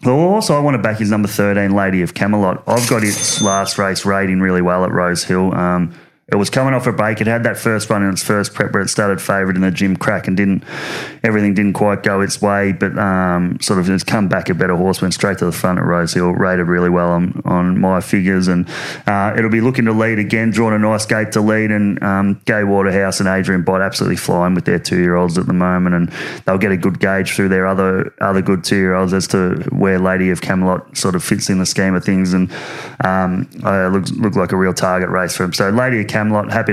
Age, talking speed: 20-39, 255 wpm